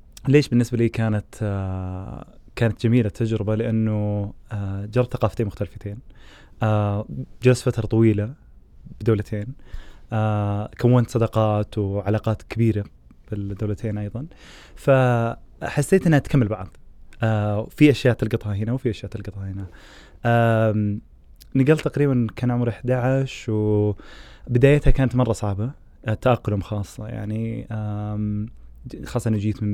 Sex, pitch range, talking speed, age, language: male, 100-120 Hz, 100 wpm, 20-39, Arabic